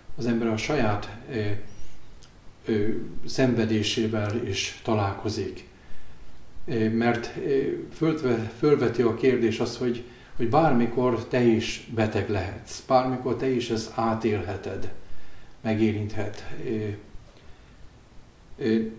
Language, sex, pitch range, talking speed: Hungarian, male, 110-120 Hz, 100 wpm